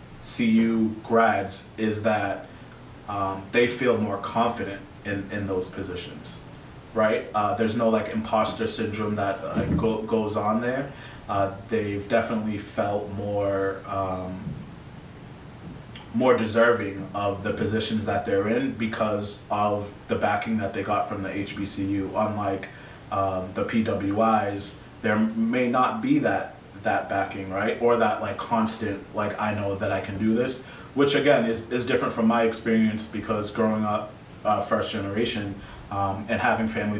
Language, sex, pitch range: English, male, 95-110 Hz